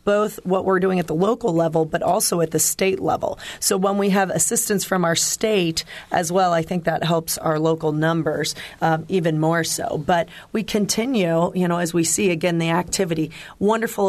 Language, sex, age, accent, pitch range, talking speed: English, female, 40-59, American, 165-200 Hz, 200 wpm